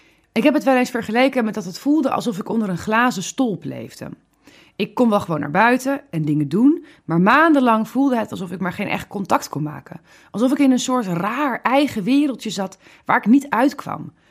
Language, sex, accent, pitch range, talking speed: Dutch, female, Dutch, 185-250 Hz, 215 wpm